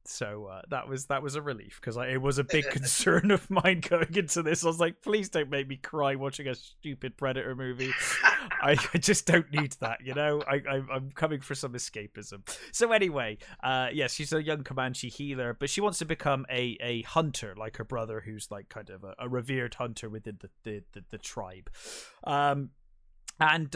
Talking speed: 205 wpm